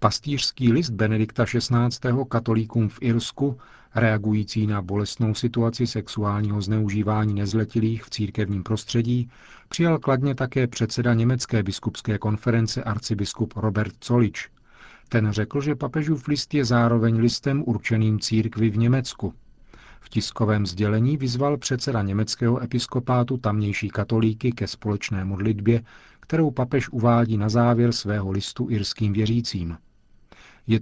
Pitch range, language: 105-125 Hz, Czech